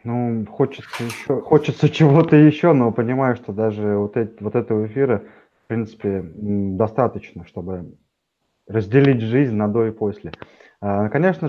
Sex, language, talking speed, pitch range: male, Russian, 125 wpm, 105-135 Hz